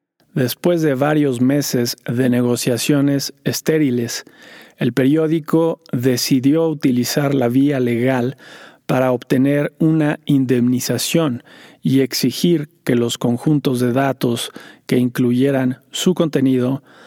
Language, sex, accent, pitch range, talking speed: Spanish, male, Mexican, 125-150 Hz, 100 wpm